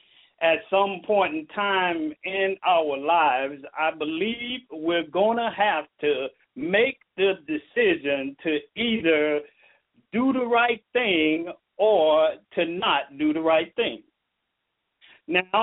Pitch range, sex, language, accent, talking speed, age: 170-235 Hz, male, English, American, 125 wpm, 50-69